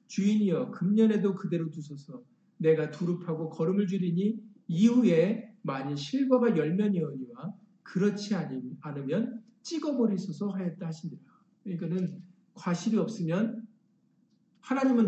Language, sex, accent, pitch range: Korean, male, native, 160-215 Hz